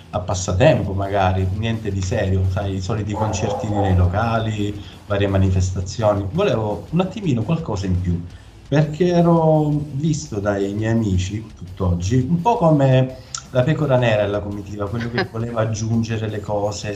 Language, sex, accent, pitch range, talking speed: Italian, male, native, 100-125 Hz, 145 wpm